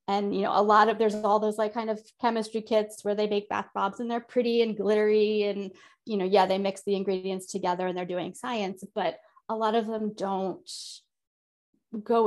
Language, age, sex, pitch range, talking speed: English, 20-39, female, 185-215 Hz, 215 wpm